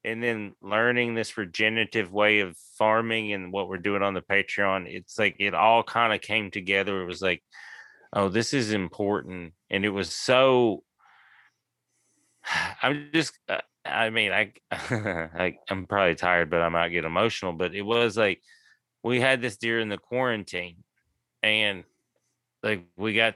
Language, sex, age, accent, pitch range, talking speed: English, male, 30-49, American, 95-115 Hz, 160 wpm